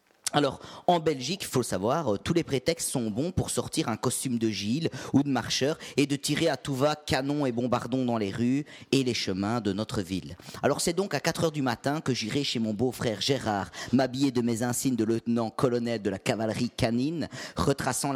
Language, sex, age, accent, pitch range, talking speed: French, male, 40-59, French, 130-175 Hz, 210 wpm